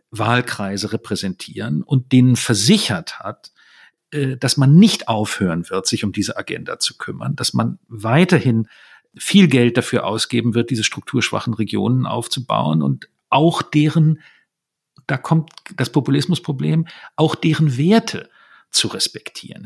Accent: German